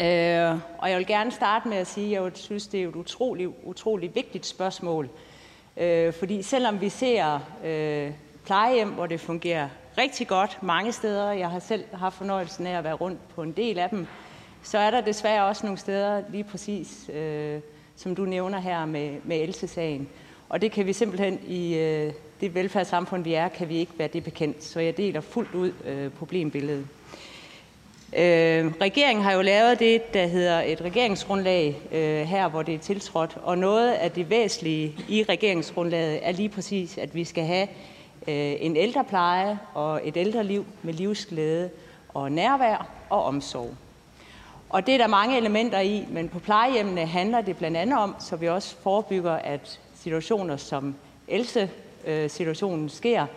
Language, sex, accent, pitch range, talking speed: Danish, female, native, 160-205 Hz, 170 wpm